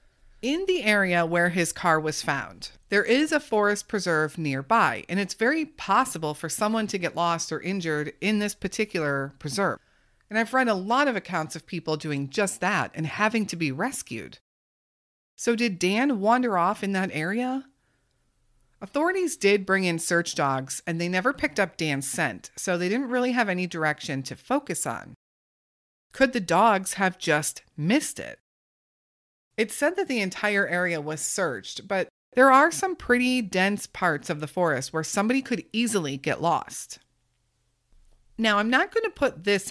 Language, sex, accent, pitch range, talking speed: English, female, American, 155-235 Hz, 175 wpm